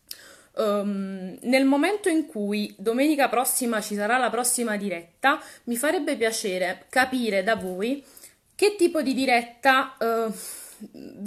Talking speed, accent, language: 120 wpm, native, Italian